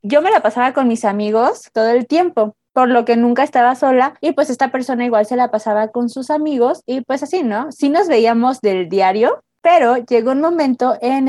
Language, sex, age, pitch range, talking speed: Spanish, female, 20-39, 230-285 Hz, 220 wpm